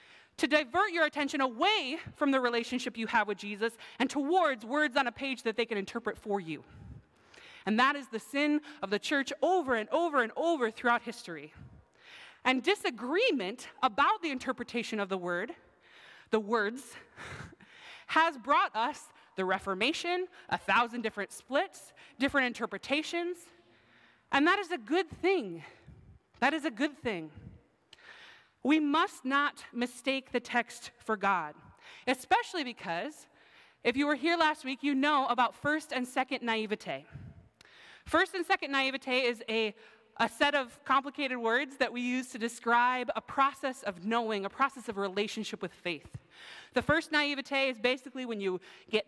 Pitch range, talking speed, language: 225-295 Hz, 155 wpm, English